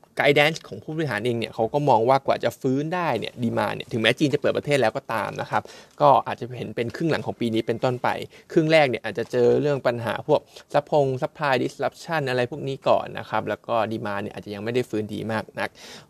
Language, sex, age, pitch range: Thai, male, 20-39, 115-145 Hz